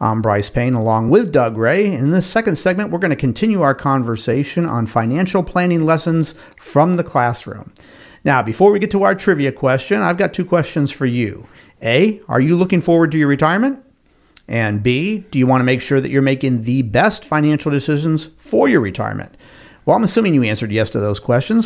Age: 50-69